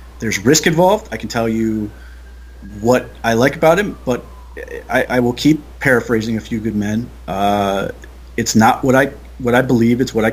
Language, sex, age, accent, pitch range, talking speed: English, male, 30-49, American, 105-120 Hz, 190 wpm